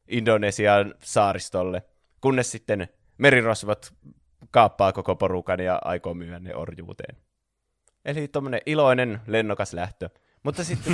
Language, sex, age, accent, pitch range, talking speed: Finnish, male, 20-39, native, 95-120 Hz, 105 wpm